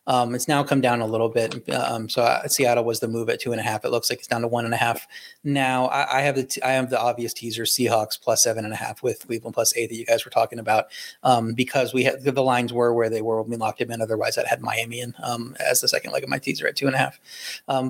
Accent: American